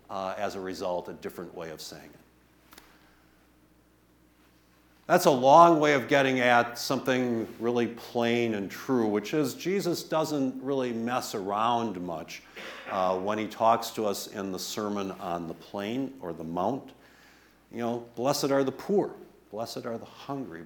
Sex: male